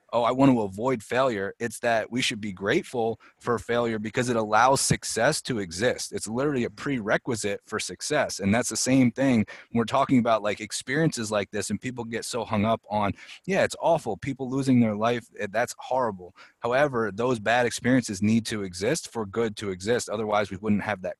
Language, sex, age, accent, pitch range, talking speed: English, male, 30-49, American, 105-125 Hz, 200 wpm